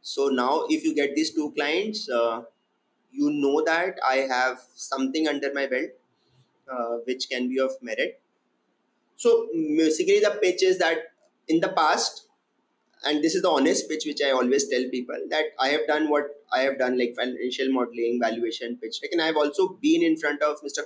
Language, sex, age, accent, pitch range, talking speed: English, male, 20-39, Indian, 125-165 Hz, 195 wpm